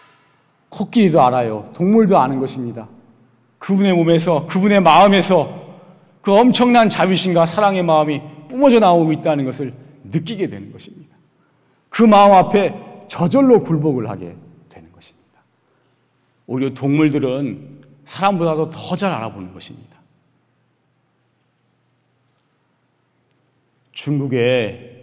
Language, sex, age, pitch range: Korean, male, 40-59, 125-180 Hz